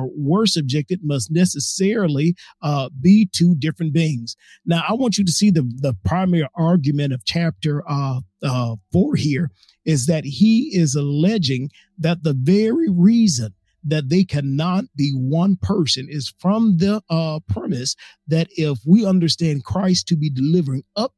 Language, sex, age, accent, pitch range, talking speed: English, male, 50-69, American, 140-175 Hz, 155 wpm